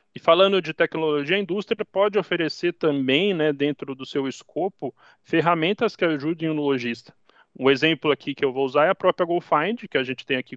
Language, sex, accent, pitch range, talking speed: Portuguese, male, Brazilian, 140-190 Hz, 200 wpm